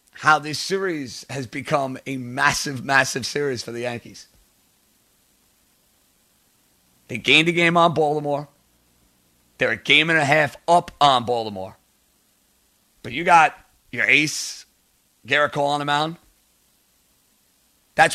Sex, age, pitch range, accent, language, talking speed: male, 30-49, 125-160 Hz, American, English, 125 wpm